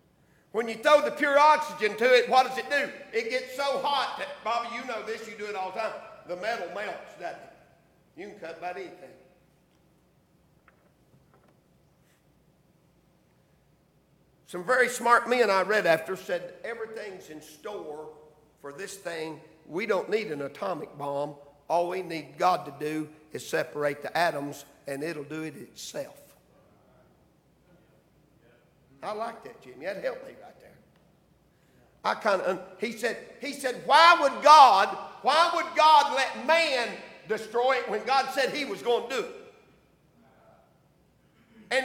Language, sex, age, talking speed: English, male, 50-69, 155 wpm